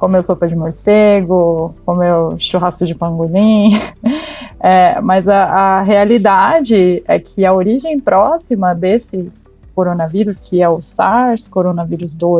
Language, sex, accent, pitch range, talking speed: Portuguese, female, Brazilian, 180-255 Hz, 115 wpm